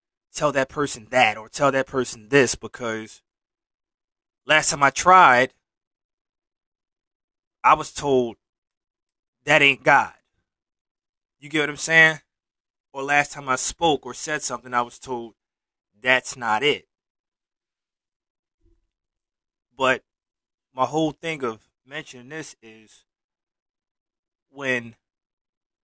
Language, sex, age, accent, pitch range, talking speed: English, male, 20-39, American, 115-145 Hz, 110 wpm